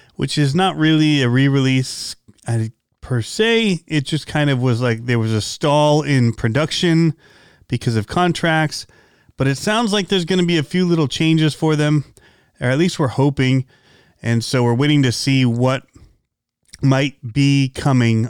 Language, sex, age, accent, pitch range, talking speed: English, male, 30-49, American, 120-155 Hz, 170 wpm